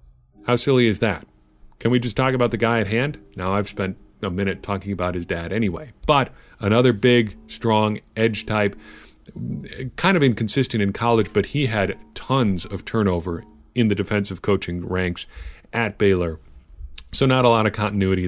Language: English